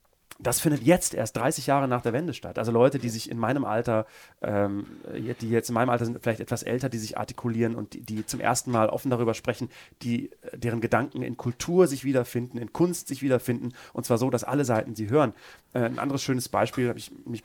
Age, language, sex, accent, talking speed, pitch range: 30-49, German, male, German, 225 wpm, 115-135 Hz